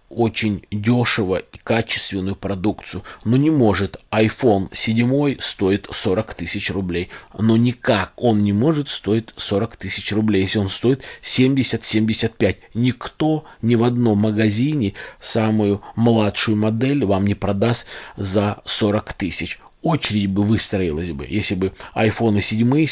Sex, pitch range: male, 100-120 Hz